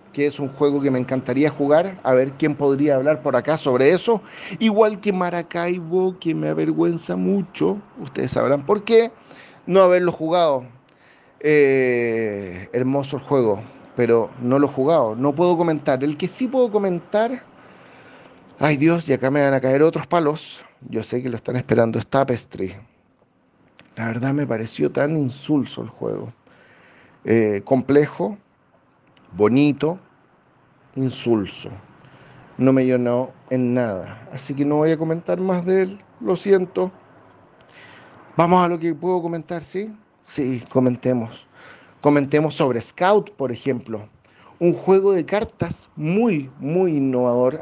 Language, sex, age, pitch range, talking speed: Spanish, male, 40-59, 130-190 Hz, 145 wpm